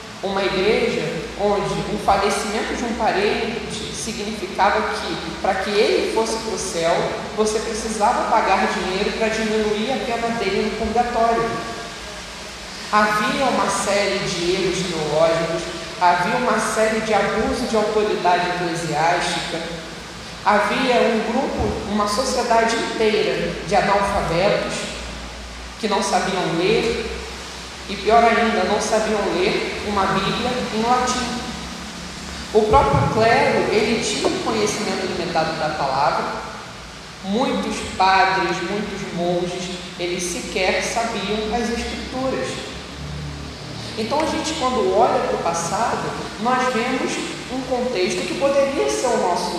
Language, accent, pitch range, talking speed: Portuguese, Brazilian, 185-230 Hz, 120 wpm